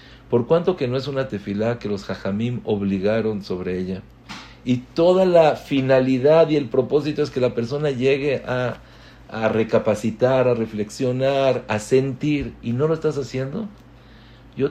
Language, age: English, 50-69